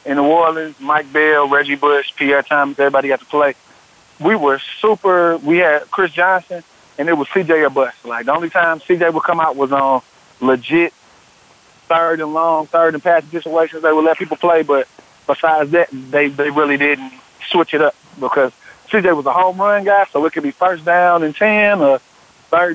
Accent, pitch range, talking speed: American, 140-170 Hz, 200 wpm